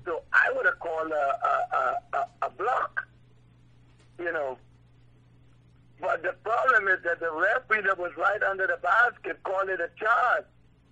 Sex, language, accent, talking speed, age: male, English, American, 160 wpm, 60-79